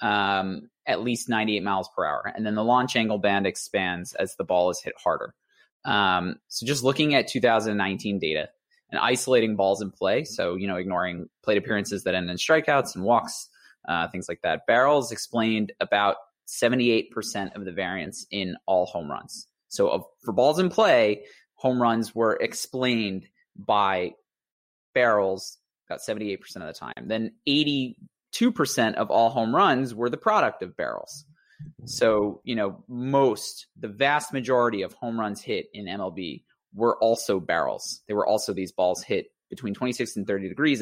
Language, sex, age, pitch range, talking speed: English, male, 20-39, 100-130 Hz, 170 wpm